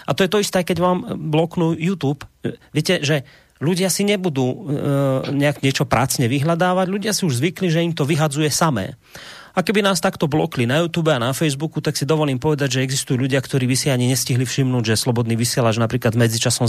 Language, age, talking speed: Slovak, 30-49, 200 wpm